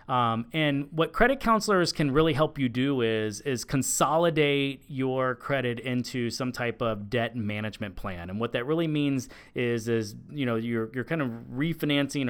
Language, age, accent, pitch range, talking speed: English, 30-49, American, 115-145 Hz, 175 wpm